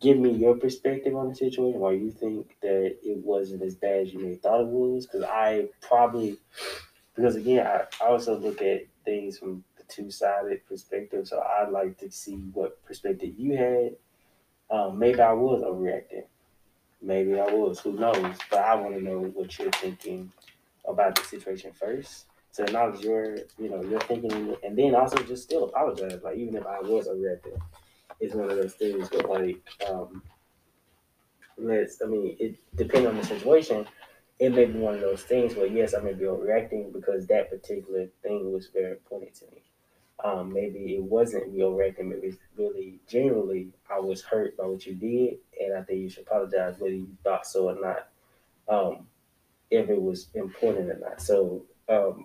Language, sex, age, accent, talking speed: English, male, 20-39, American, 185 wpm